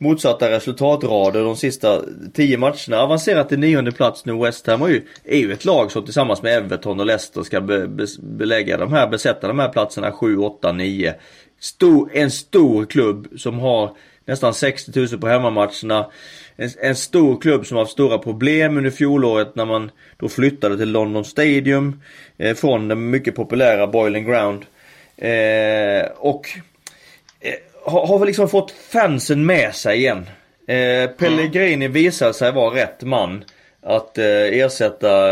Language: Swedish